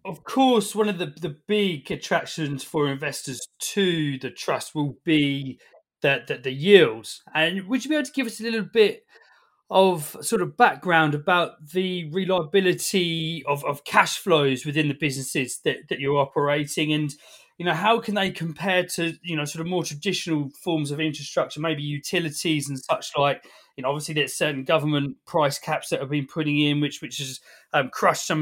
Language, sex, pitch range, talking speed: English, male, 140-175 Hz, 190 wpm